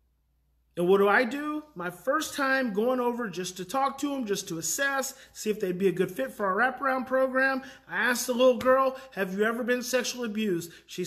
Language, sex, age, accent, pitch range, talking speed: English, male, 30-49, American, 215-290 Hz, 220 wpm